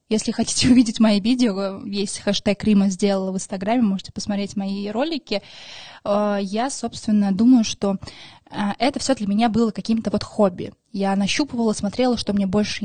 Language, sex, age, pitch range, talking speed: Russian, female, 20-39, 195-230 Hz, 155 wpm